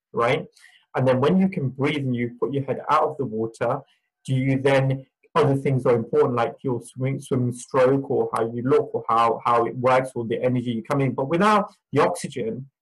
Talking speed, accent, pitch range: 215 wpm, British, 125-150 Hz